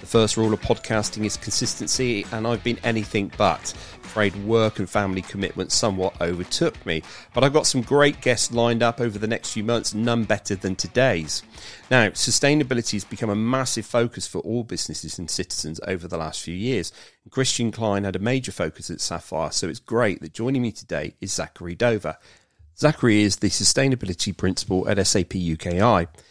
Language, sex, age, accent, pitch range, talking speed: English, male, 40-59, British, 90-110 Hz, 185 wpm